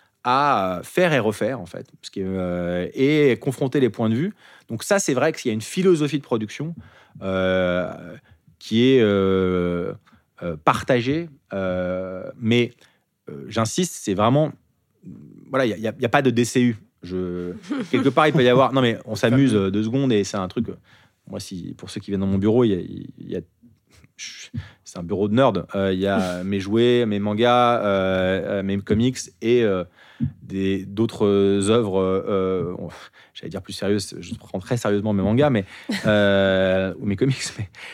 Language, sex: French, male